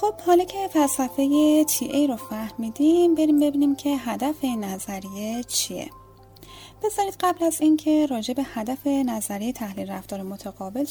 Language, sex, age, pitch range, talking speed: Persian, female, 10-29, 205-275 Hz, 145 wpm